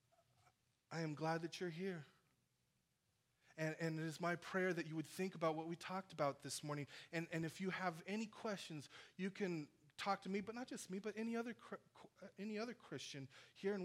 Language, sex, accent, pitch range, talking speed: English, male, American, 125-190 Hz, 205 wpm